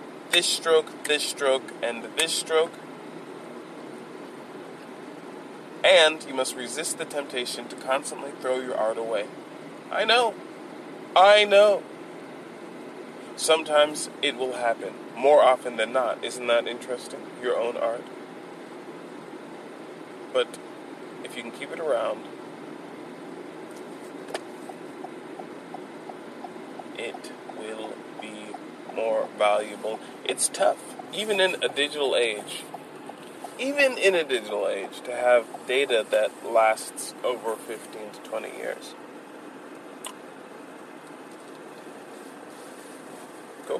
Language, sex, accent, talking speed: English, male, American, 100 wpm